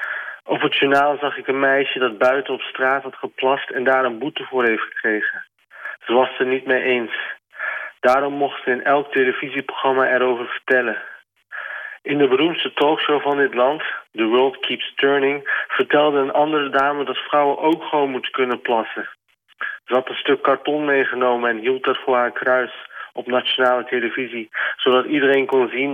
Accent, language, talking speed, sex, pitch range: Dutch, Dutch, 175 wpm, male, 130-145 Hz